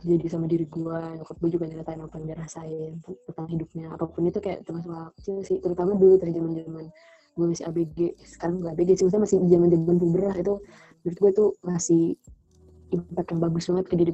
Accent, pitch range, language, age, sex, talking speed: native, 165-185 Hz, Indonesian, 20-39, female, 180 wpm